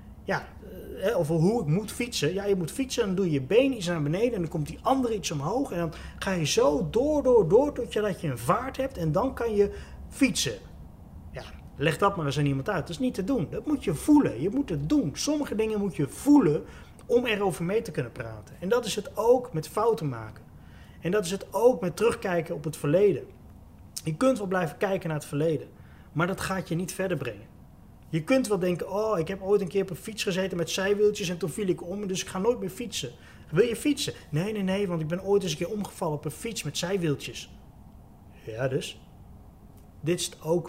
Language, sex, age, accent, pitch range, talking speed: Dutch, male, 30-49, Dutch, 150-210 Hz, 240 wpm